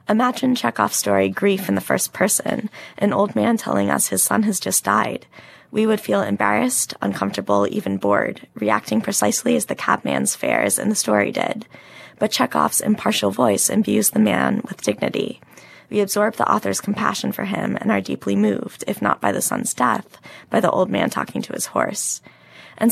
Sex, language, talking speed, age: female, English, 185 wpm, 20-39